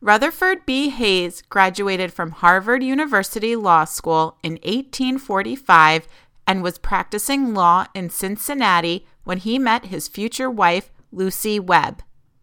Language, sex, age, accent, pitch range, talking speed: English, female, 30-49, American, 175-240 Hz, 120 wpm